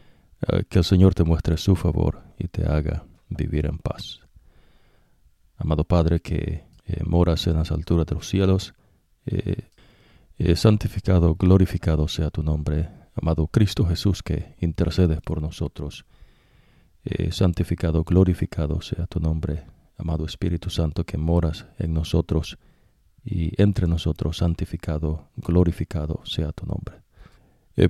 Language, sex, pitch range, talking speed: English, male, 80-90 Hz, 130 wpm